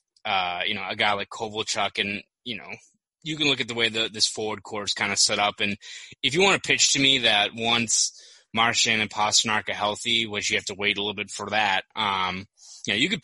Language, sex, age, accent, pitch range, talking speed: English, male, 20-39, American, 105-120 Hz, 245 wpm